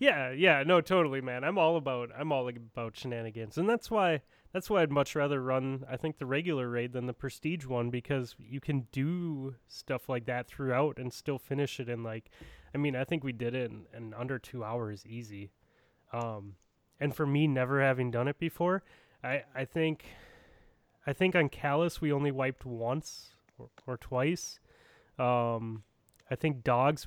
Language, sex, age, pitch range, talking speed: English, male, 20-39, 115-145 Hz, 190 wpm